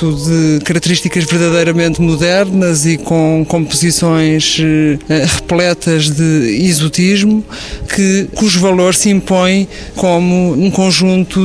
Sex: male